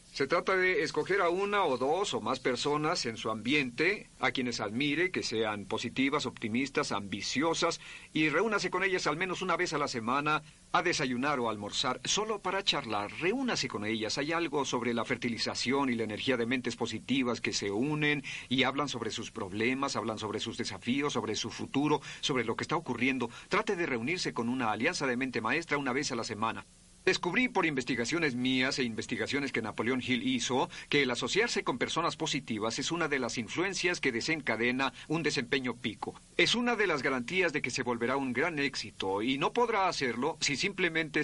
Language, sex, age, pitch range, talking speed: Spanish, male, 50-69, 115-155 Hz, 190 wpm